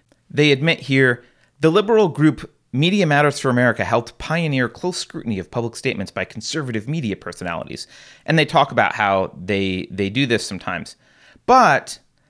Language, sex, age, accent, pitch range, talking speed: English, male, 30-49, American, 115-155 Hz, 155 wpm